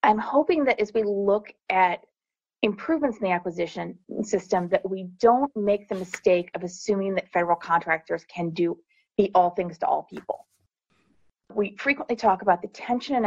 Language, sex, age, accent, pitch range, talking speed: English, female, 30-49, American, 180-220 Hz, 170 wpm